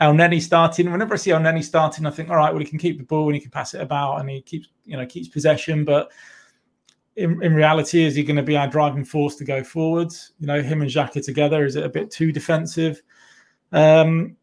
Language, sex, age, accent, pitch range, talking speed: English, male, 20-39, British, 140-165 Hz, 240 wpm